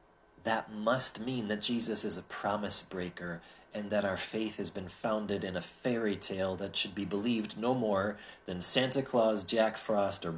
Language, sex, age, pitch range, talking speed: English, male, 30-49, 95-130 Hz, 180 wpm